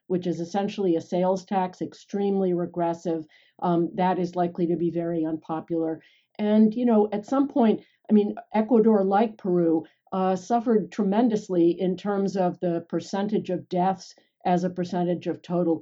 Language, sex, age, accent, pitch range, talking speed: English, female, 50-69, American, 170-200 Hz, 160 wpm